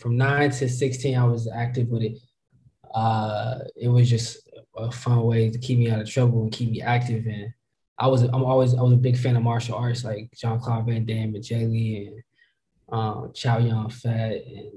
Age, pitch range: 20-39, 115-130 Hz